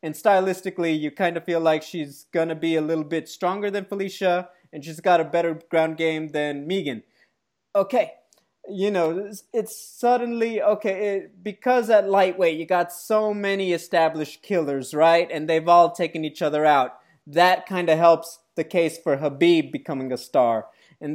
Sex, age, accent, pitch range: male, 30-49, American, 165-215 Hz